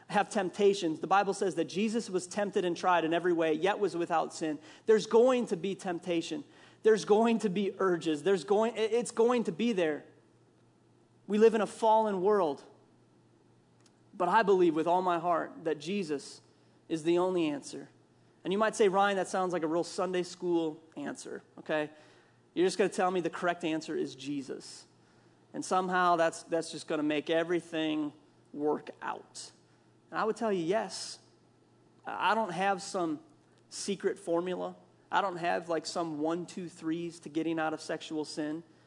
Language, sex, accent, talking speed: English, male, American, 180 wpm